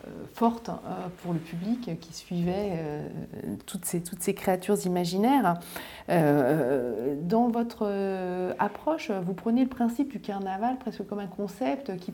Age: 40-59